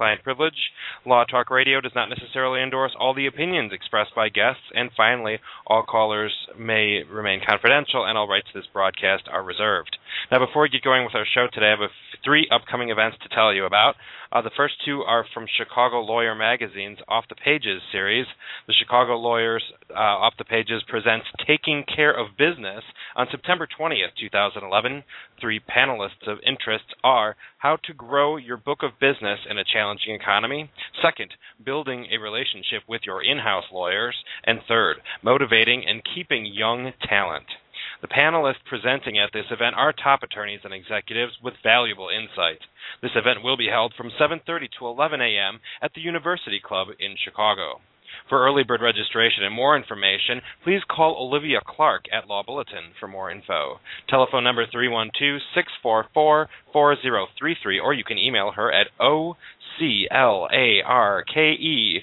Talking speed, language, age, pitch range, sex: 160 wpm, English, 30-49, 110-145 Hz, male